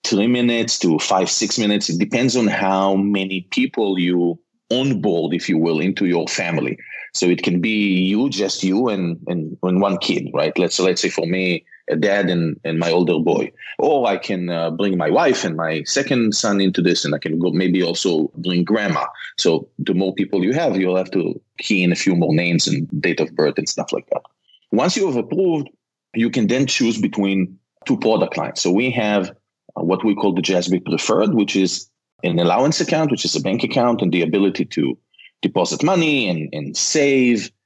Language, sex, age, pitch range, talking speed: English, male, 30-49, 90-110 Hz, 205 wpm